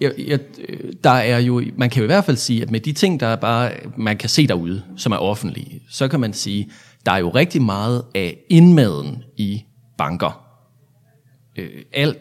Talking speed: 200 wpm